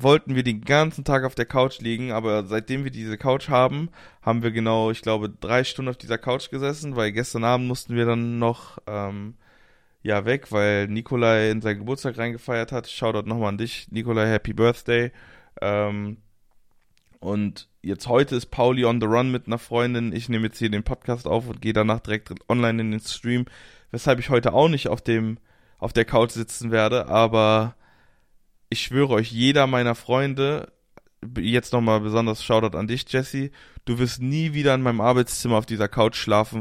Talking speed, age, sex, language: 185 wpm, 20-39, male, German